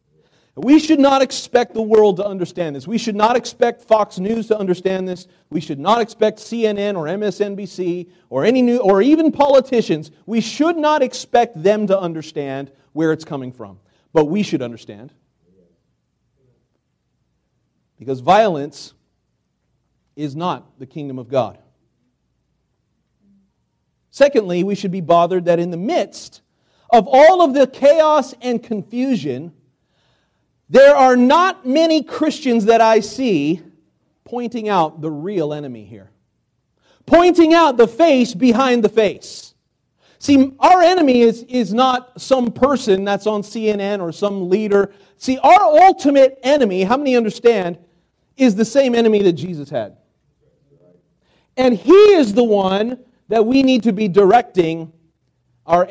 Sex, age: male, 40-59